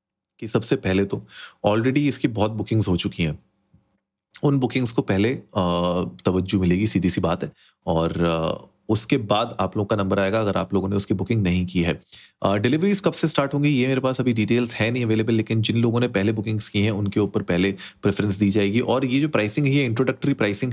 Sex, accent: male, native